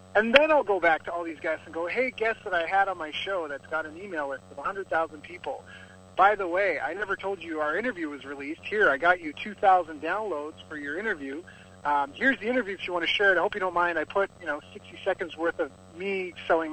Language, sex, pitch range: English, male, 155-210 Hz